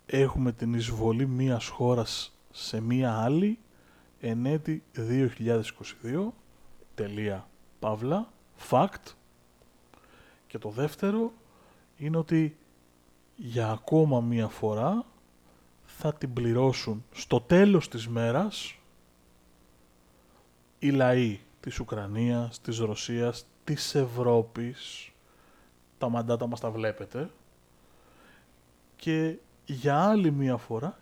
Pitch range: 105-150 Hz